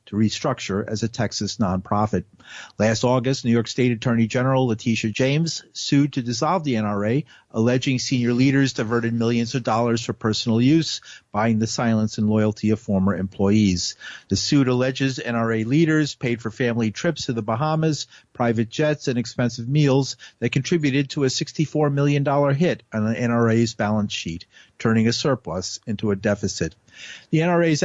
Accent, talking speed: American, 160 wpm